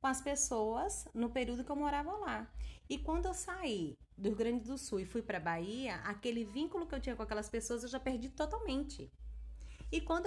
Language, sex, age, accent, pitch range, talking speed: Portuguese, female, 20-39, Brazilian, 185-250 Hz, 210 wpm